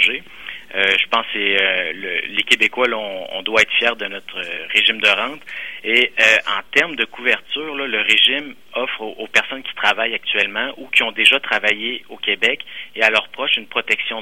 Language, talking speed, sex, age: French, 205 wpm, male, 30-49